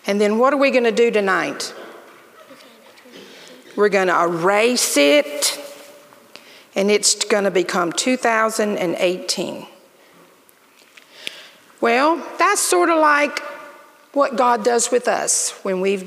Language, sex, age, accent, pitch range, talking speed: English, female, 50-69, American, 200-290 Hz, 120 wpm